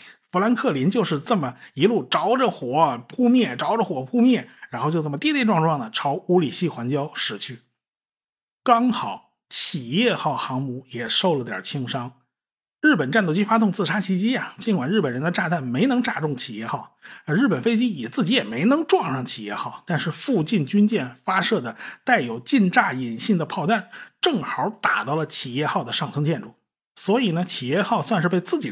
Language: Chinese